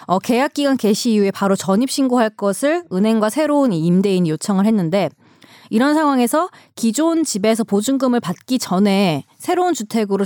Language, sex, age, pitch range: Korean, female, 30-49, 190-265 Hz